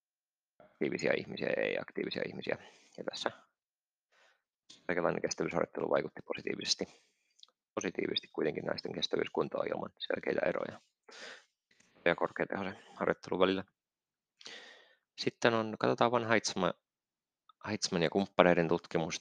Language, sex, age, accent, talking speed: Finnish, male, 30-49, native, 95 wpm